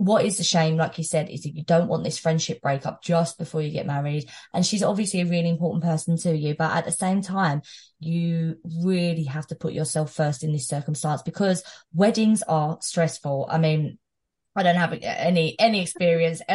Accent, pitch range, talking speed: British, 155-185 Hz, 205 wpm